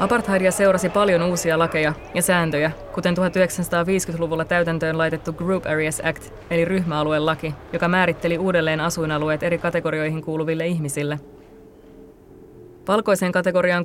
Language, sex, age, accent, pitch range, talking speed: Finnish, female, 20-39, native, 165-180 Hz, 115 wpm